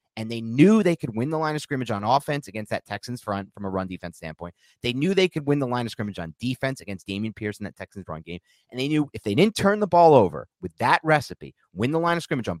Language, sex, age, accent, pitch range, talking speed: English, male, 30-49, American, 105-150 Hz, 280 wpm